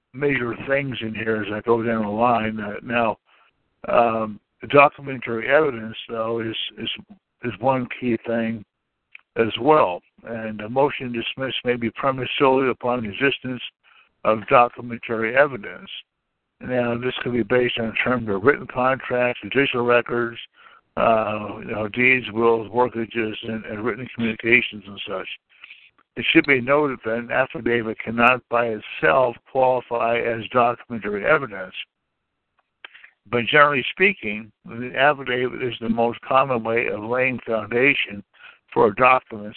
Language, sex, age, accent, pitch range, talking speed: English, male, 60-79, American, 110-130 Hz, 140 wpm